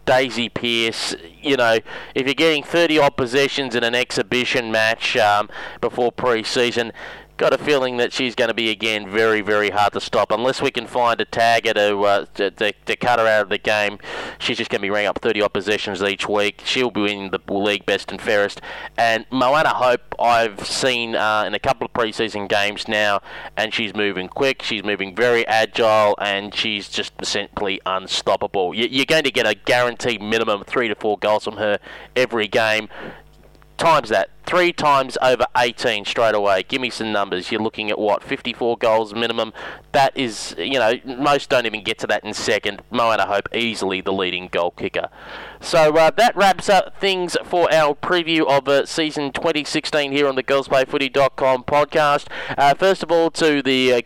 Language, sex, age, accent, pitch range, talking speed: English, male, 20-39, Australian, 110-145 Hz, 190 wpm